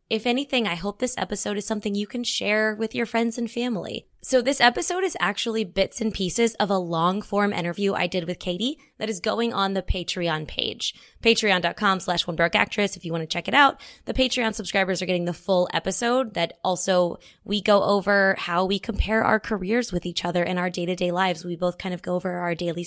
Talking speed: 215 wpm